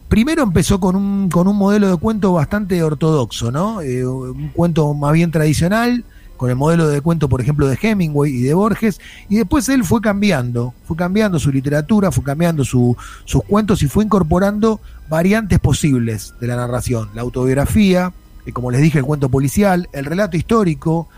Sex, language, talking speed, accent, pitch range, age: male, Spanish, 180 wpm, Argentinian, 140-190 Hz, 30-49